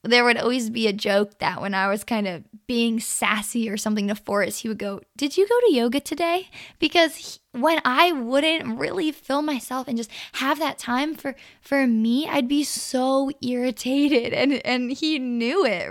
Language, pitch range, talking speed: English, 215-270 Hz, 195 wpm